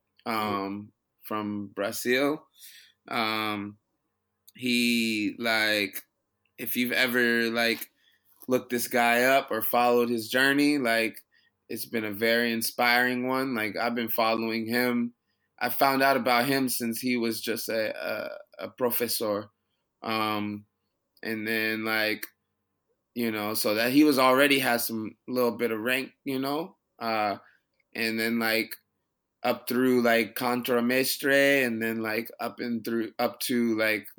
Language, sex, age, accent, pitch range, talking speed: English, male, 20-39, American, 110-125 Hz, 140 wpm